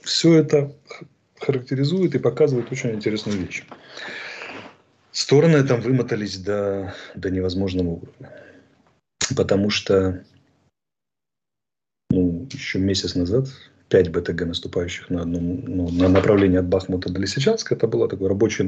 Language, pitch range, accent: Russian, 95-120 Hz, native